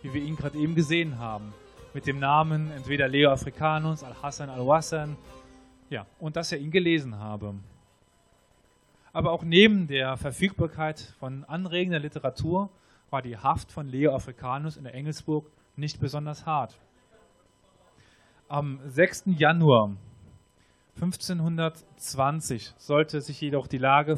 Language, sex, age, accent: German, male, 20-39, German